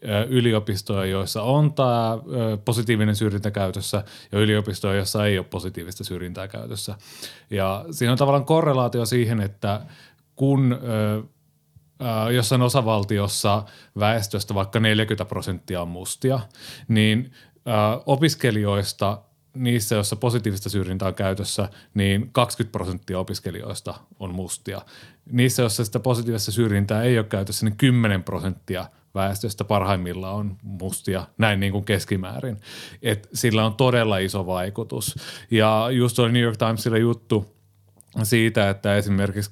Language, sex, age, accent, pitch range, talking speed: Finnish, male, 30-49, native, 100-120 Hz, 120 wpm